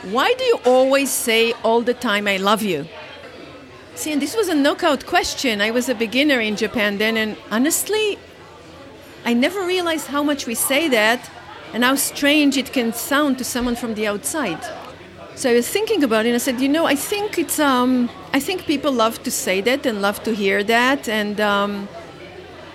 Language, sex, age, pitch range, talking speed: English, female, 50-69, 215-280 Hz, 200 wpm